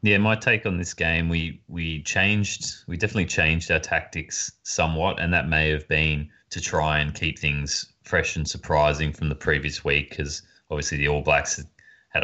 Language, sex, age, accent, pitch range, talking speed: English, male, 30-49, Australian, 75-85 Hz, 185 wpm